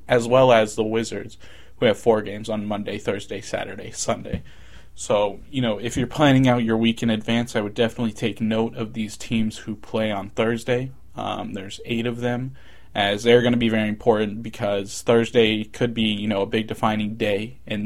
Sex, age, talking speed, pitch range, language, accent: male, 20-39, 200 wpm, 105-120 Hz, English, American